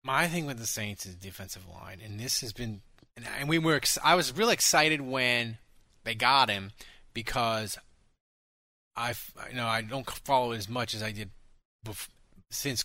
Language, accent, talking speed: English, American, 155 wpm